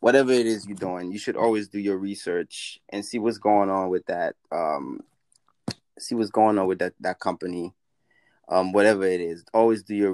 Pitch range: 95-120 Hz